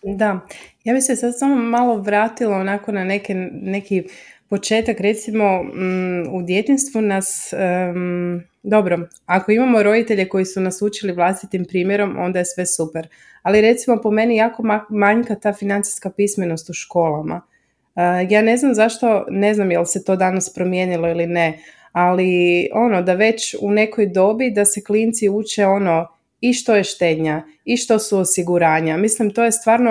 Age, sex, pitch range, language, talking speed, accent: 20-39, female, 185-220 Hz, Croatian, 170 wpm, native